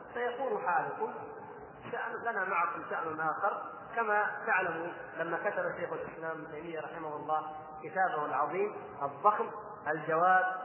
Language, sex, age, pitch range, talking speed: Arabic, male, 30-49, 180-235 Hz, 115 wpm